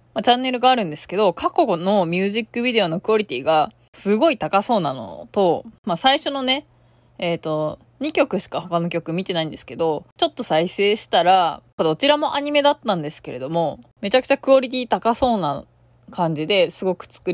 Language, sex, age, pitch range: Japanese, female, 20-39, 165-245 Hz